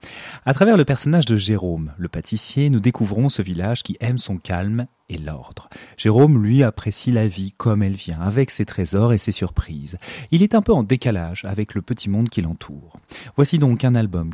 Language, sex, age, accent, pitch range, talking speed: French, male, 30-49, French, 90-125 Hz, 200 wpm